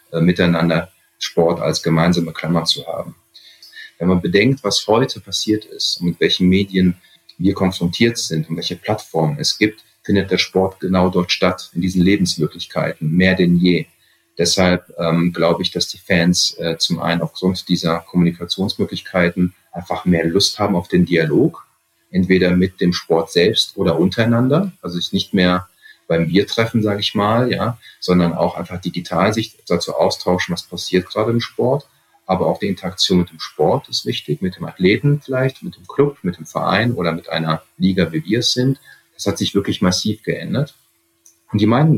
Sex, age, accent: male, 30-49, German